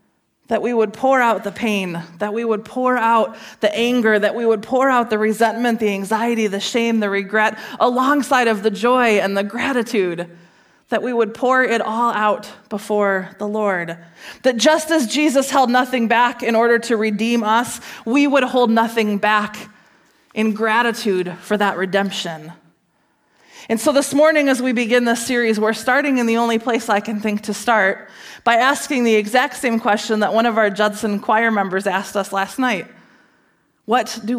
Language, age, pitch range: English, 20-39, 205-245 Hz